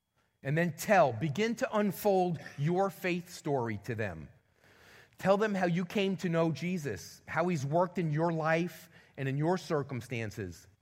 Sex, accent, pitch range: male, American, 135-185 Hz